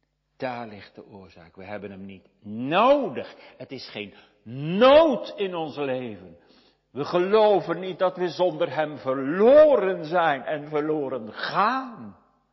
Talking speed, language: 135 wpm, Dutch